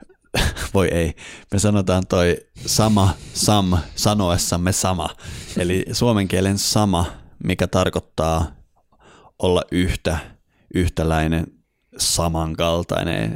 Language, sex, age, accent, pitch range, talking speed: Finnish, male, 30-49, native, 80-95 Hz, 85 wpm